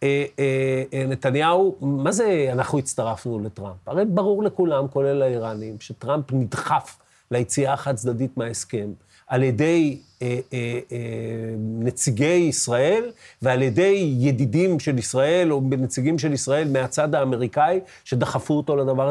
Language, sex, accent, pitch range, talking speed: Hebrew, male, native, 125-160 Hz, 125 wpm